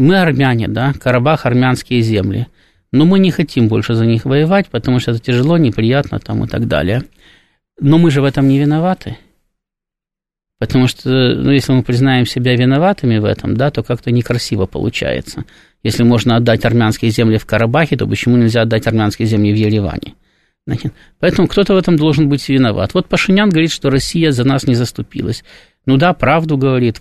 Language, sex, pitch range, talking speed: Russian, male, 120-155 Hz, 180 wpm